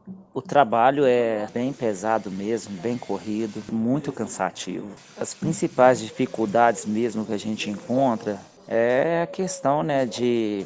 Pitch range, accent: 100-115 Hz, Brazilian